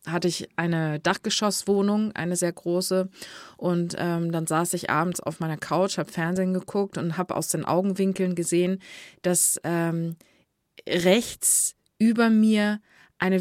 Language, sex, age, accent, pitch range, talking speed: German, female, 30-49, German, 180-215 Hz, 140 wpm